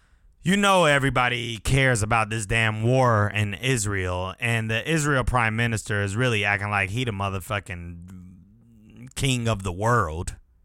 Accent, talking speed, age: American, 145 wpm, 30-49